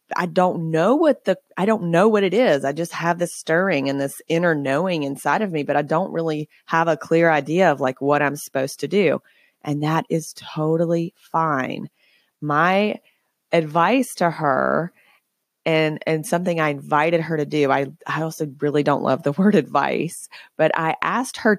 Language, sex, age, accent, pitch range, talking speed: English, female, 30-49, American, 150-190 Hz, 190 wpm